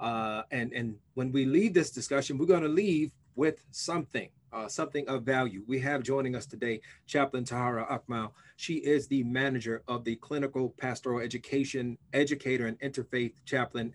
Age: 30-49